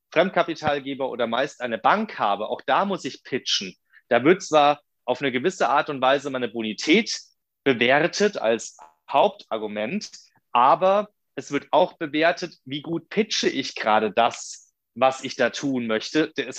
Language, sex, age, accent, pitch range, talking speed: German, male, 30-49, German, 130-175 Hz, 150 wpm